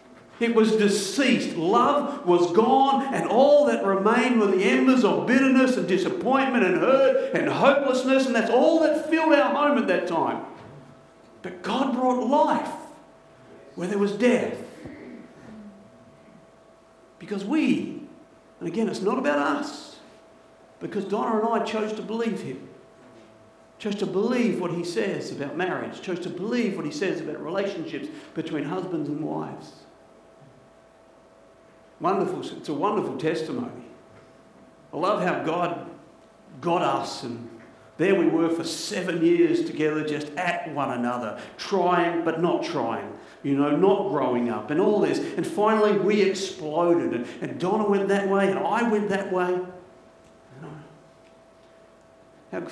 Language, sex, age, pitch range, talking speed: English, male, 50-69, 175-265 Hz, 140 wpm